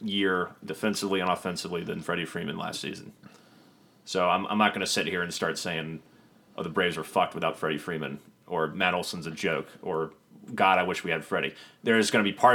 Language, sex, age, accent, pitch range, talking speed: English, male, 30-49, American, 100-125 Hz, 215 wpm